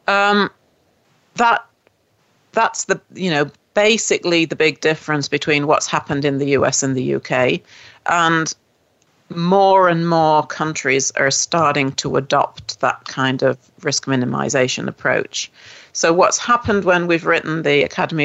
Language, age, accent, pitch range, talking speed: English, 40-59, British, 135-165 Hz, 140 wpm